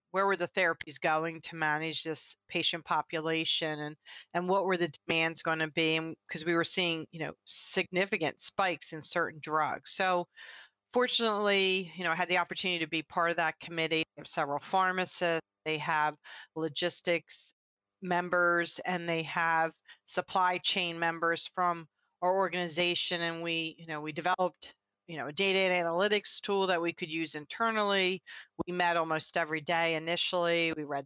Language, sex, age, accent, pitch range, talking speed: English, female, 40-59, American, 160-185 Hz, 165 wpm